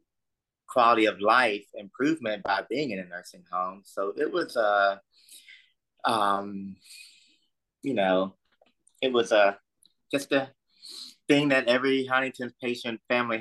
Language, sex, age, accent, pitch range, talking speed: English, male, 30-49, American, 90-125 Hz, 135 wpm